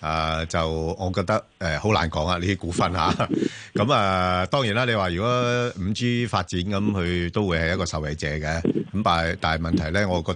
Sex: male